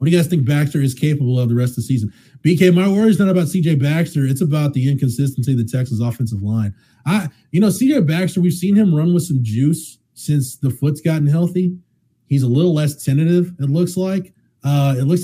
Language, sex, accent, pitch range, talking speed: English, male, American, 120-165 Hz, 230 wpm